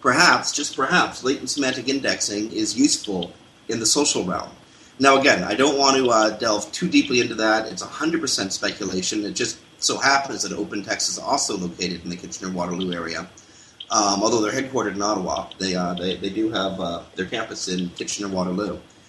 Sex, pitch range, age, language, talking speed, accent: male, 100-150 Hz, 30-49, English, 180 wpm, American